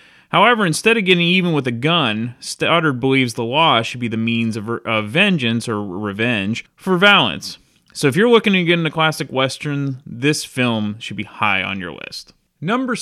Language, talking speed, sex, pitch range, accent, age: English, 190 wpm, male, 115-170 Hz, American, 30-49